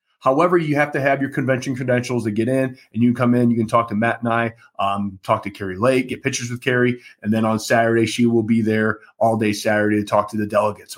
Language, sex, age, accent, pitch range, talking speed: English, male, 30-49, American, 120-160 Hz, 265 wpm